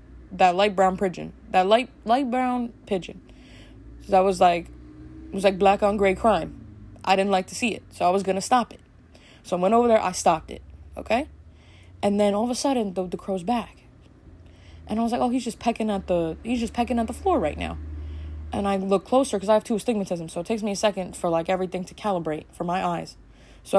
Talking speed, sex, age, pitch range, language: 235 wpm, female, 20-39, 165-220 Hz, English